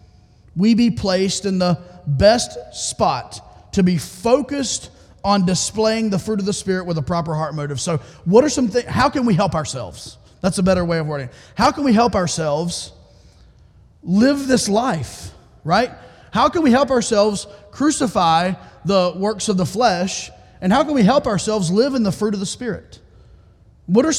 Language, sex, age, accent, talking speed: English, male, 30-49, American, 180 wpm